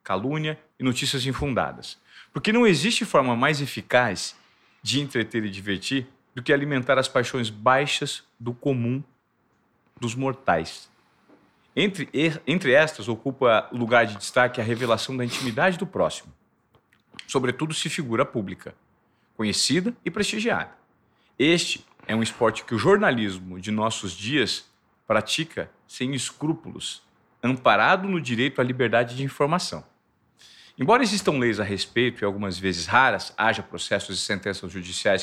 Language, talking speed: Portuguese, 135 wpm